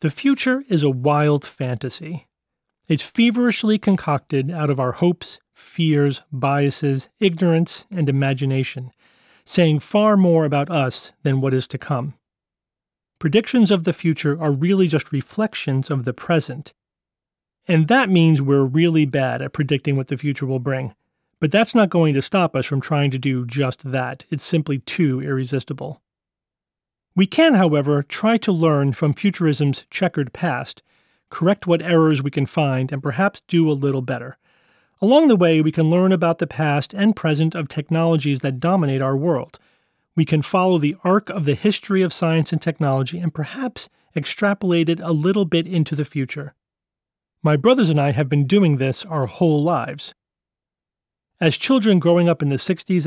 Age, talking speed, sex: 40-59, 165 wpm, male